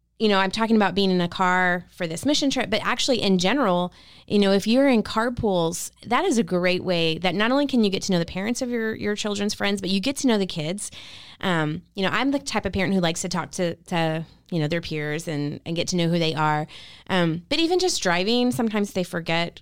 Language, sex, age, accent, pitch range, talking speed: English, female, 20-39, American, 165-210 Hz, 255 wpm